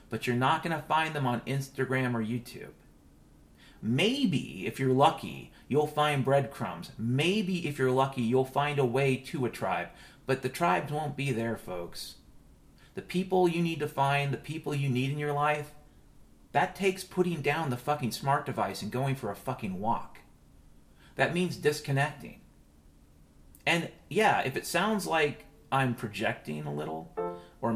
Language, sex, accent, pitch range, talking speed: English, male, American, 95-150 Hz, 165 wpm